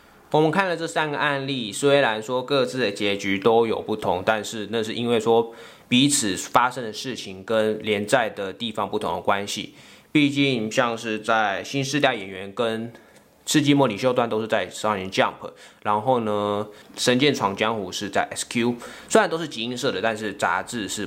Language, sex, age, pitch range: Chinese, male, 20-39, 105-135 Hz